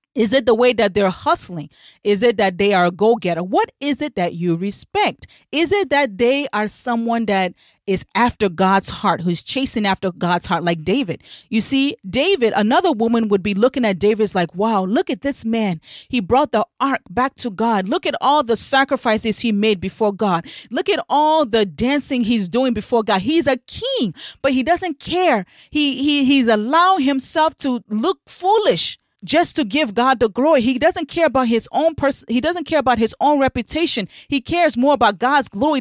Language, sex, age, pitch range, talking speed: English, female, 30-49, 210-290 Hz, 200 wpm